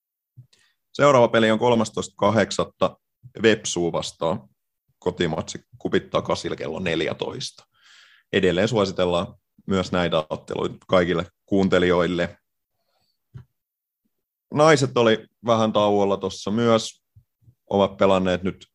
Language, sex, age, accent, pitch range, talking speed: Finnish, male, 30-49, native, 90-110 Hz, 80 wpm